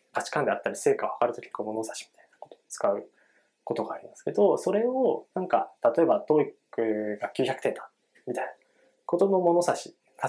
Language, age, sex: Japanese, 20-39, male